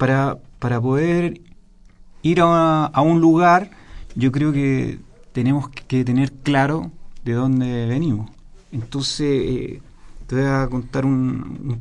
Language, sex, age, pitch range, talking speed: Spanish, male, 40-59, 125-160 Hz, 135 wpm